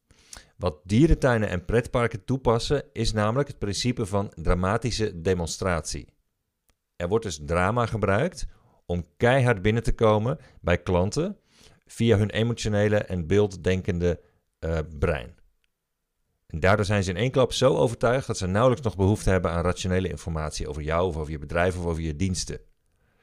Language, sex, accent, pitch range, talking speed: Dutch, male, Dutch, 85-115 Hz, 150 wpm